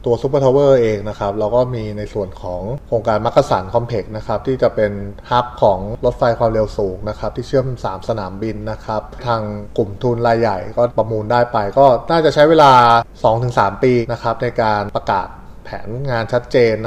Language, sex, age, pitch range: Thai, male, 20-39, 105-125 Hz